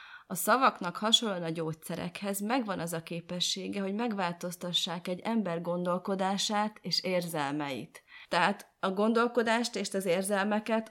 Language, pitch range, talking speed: Hungarian, 170-210 Hz, 120 wpm